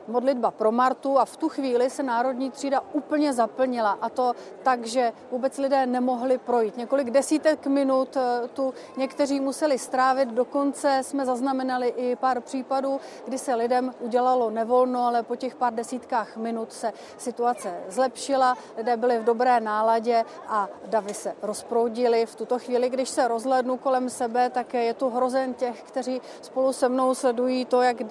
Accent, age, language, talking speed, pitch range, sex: native, 30-49, Czech, 160 wpm, 235-265 Hz, female